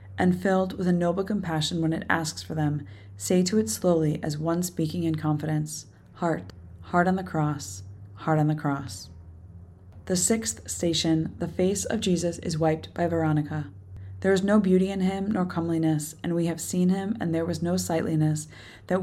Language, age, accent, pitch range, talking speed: English, 20-39, American, 150-180 Hz, 185 wpm